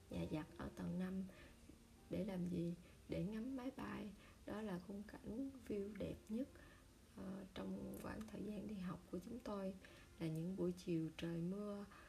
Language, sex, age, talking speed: Vietnamese, female, 20-39, 175 wpm